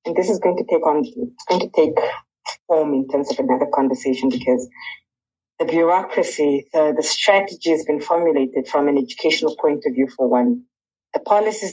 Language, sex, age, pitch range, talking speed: English, female, 20-39, 135-190 Hz, 180 wpm